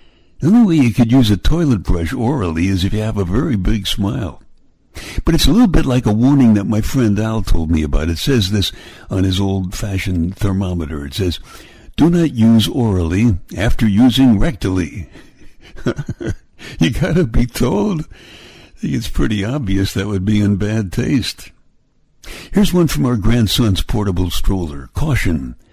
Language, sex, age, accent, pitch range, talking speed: English, male, 60-79, American, 95-125 Hz, 165 wpm